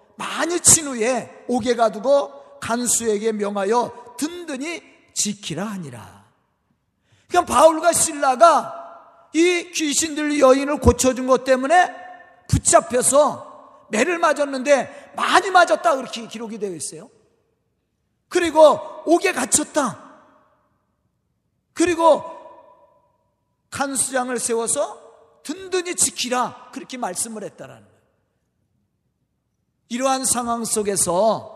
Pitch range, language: 240-320 Hz, Korean